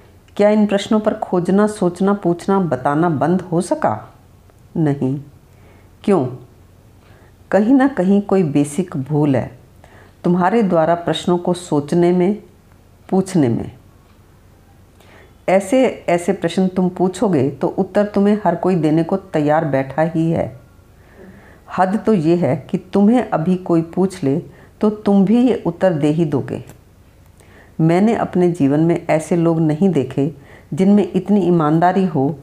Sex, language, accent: female, Hindi, native